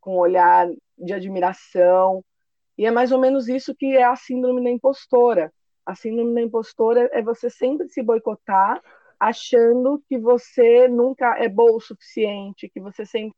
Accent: Brazilian